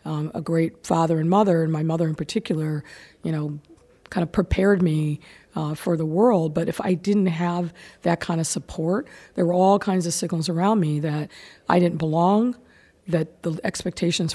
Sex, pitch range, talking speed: female, 160-185 Hz, 190 wpm